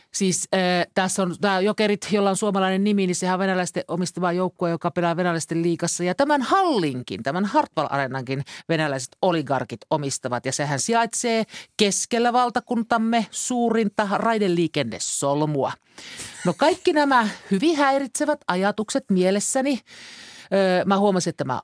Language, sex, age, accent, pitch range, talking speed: Finnish, male, 50-69, native, 155-220 Hz, 130 wpm